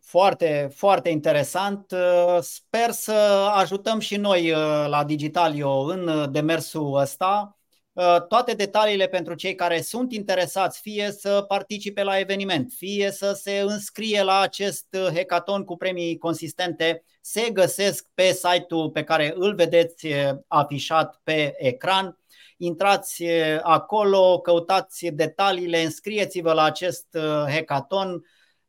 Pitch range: 155-190 Hz